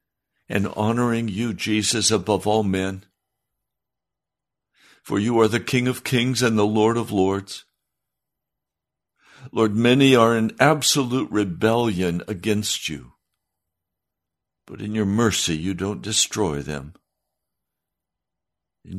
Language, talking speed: English, 115 wpm